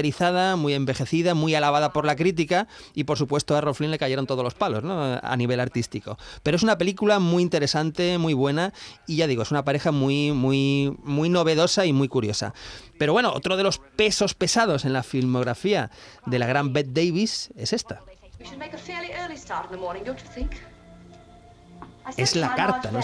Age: 30-49